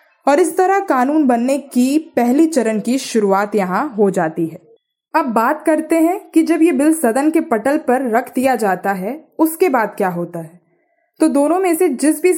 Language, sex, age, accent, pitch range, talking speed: Hindi, female, 20-39, native, 220-305 Hz, 200 wpm